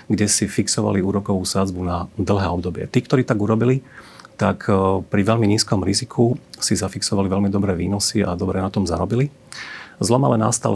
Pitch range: 95-110 Hz